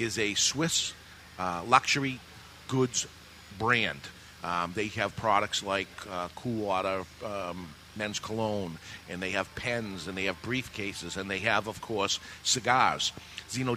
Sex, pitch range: male, 95-125 Hz